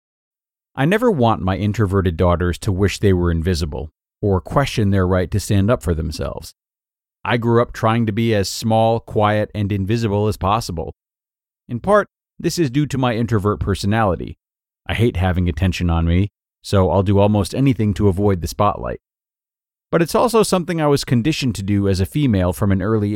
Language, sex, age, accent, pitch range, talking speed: English, male, 30-49, American, 95-120 Hz, 185 wpm